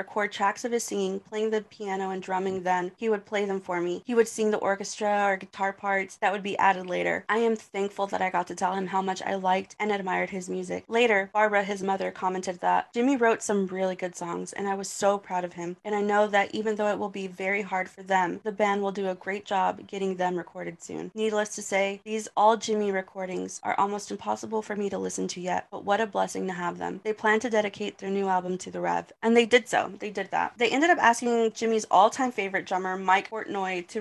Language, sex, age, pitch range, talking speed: English, female, 20-39, 185-215 Hz, 250 wpm